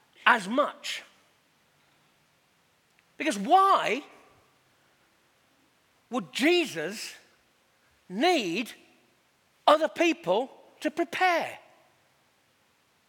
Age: 50-69